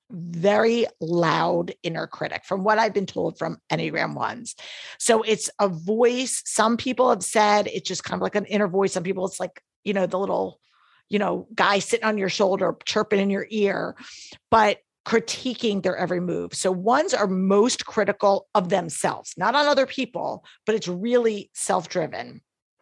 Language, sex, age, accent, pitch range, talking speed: English, female, 50-69, American, 185-220 Hz, 175 wpm